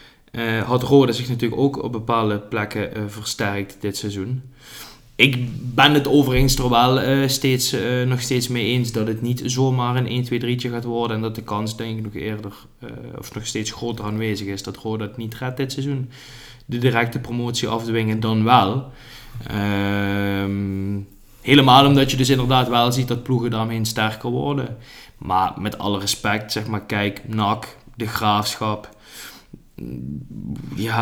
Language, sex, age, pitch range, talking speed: Dutch, male, 20-39, 110-135 Hz, 165 wpm